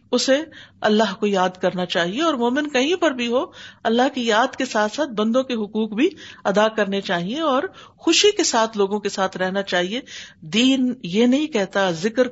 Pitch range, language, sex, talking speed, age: 205-270 Hz, Urdu, female, 190 wpm, 50-69